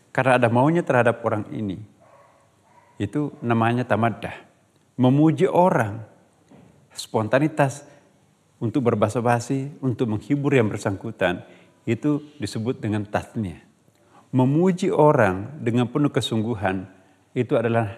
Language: Indonesian